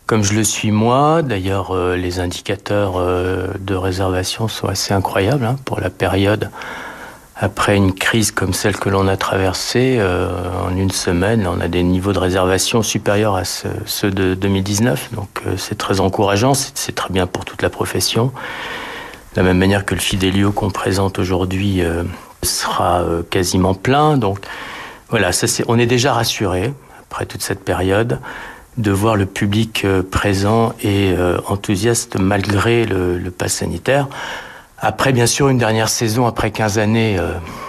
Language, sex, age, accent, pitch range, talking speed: French, male, 50-69, French, 95-110 Hz, 170 wpm